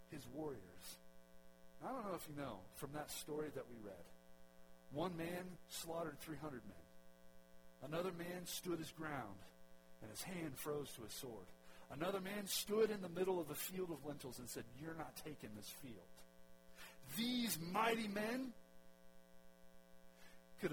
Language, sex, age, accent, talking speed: English, male, 50-69, American, 155 wpm